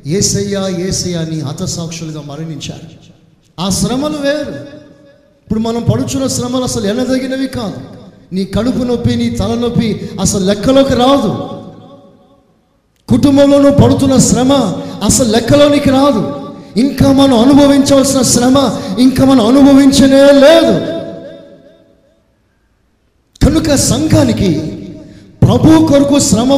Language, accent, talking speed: Telugu, native, 95 wpm